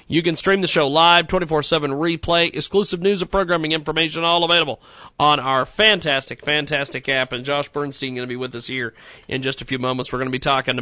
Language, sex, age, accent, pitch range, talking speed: English, male, 40-59, American, 135-180 Hz, 220 wpm